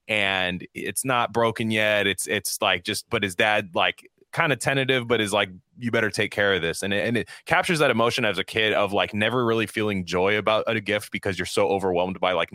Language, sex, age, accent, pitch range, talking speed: English, male, 20-39, American, 95-115 Hz, 240 wpm